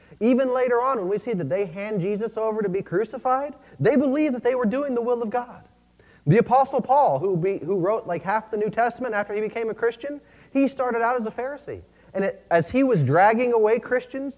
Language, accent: English, American